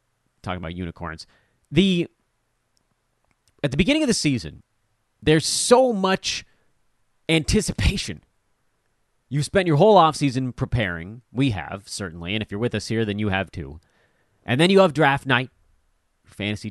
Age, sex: 30-49, male